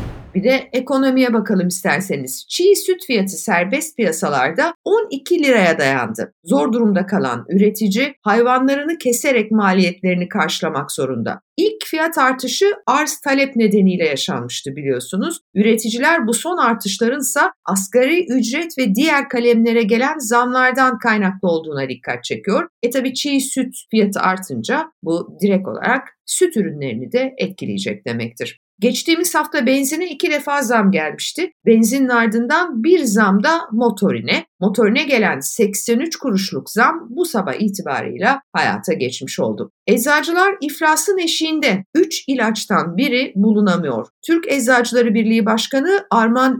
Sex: female